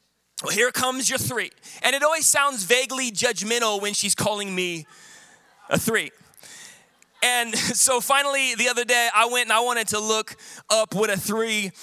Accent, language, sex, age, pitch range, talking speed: American, English, male, 20-39, 205-255 Hz, 170 wpm